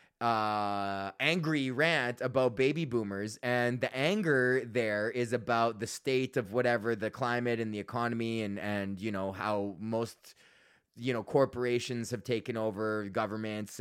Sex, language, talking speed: male, English, 150 wpm